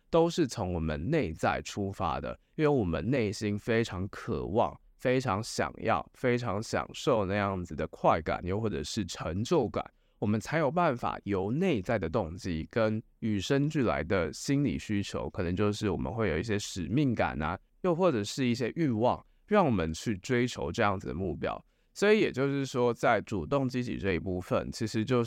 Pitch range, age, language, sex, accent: 90-120 Hz, 20-39, Chinese, male, native